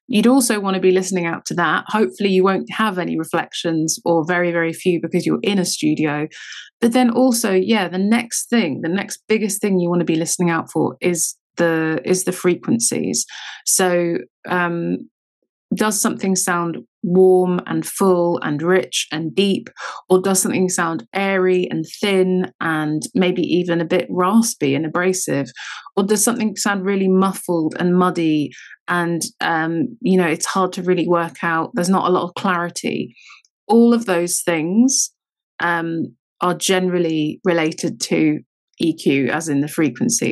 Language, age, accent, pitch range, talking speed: English, 20-39, British, 165-195 Hz, 165 wpm